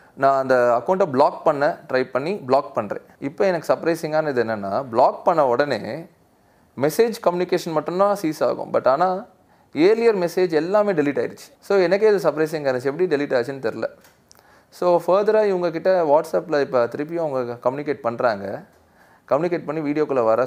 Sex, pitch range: male, 120-175 Hz